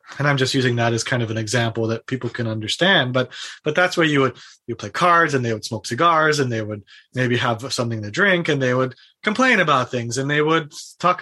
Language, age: English, 30-49